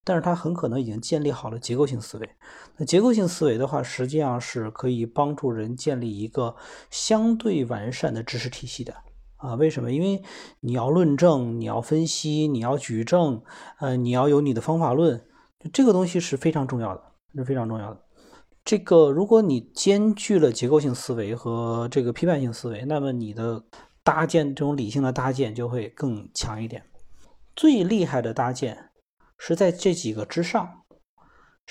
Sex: male